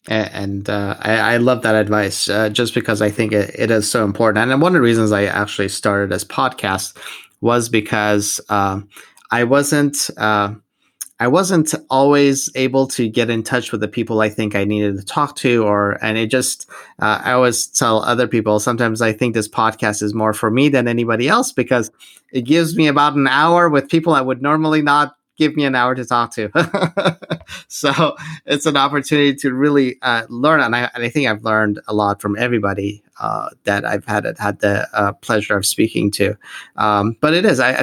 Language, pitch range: English, 105-125 Hz